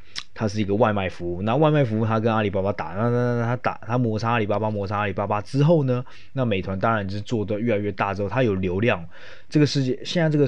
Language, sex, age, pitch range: Chinese, male, 20-39, 95-115 Hz